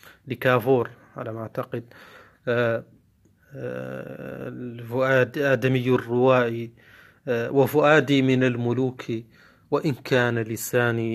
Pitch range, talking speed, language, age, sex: 115-135 Hz, 80 wpm, Arabic, 30-49, male